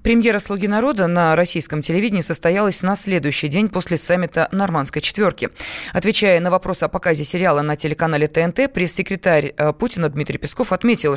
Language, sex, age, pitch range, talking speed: Russian, female, 20-39, 165-210 Hz, 150 wpm